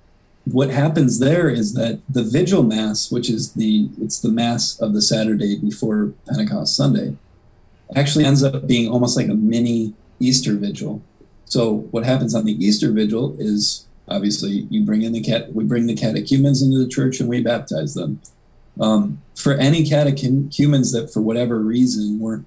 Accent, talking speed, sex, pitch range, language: American, 170 wpm, male, 105-130 Hz, English